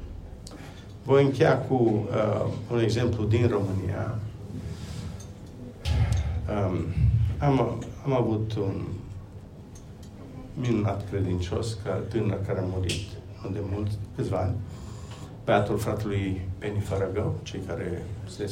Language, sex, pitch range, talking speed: Romanian, male, 100-120 Hz, 105 wpm